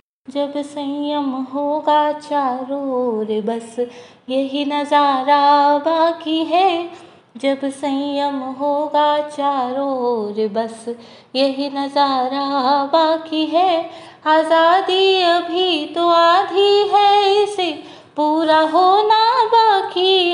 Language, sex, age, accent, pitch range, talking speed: Hindi, female, 20-39, native, 280-355 Hz, 85 wpm